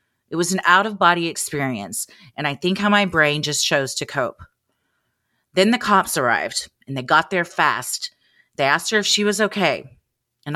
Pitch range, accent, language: 150-195 Hz, American, English